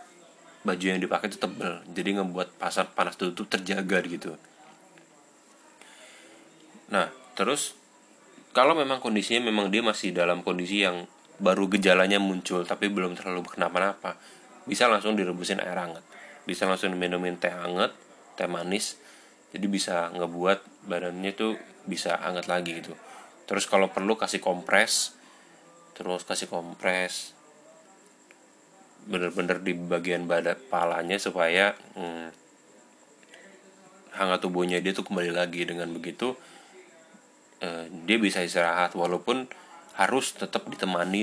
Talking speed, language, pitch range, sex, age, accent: 120 wpm, Indonesian, 85-100 Hz, male, 20-39, native